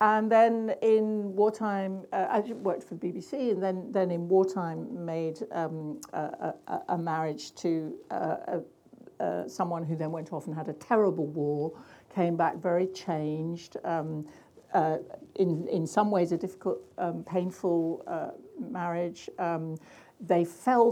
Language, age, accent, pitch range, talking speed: English, 60-79, British, 165-200 Hz, 150 wpm